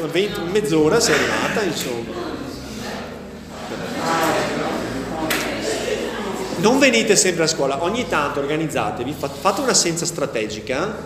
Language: Italian